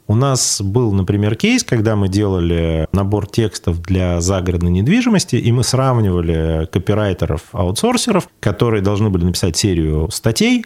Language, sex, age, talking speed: Russian, male, 30-49, 130 wpm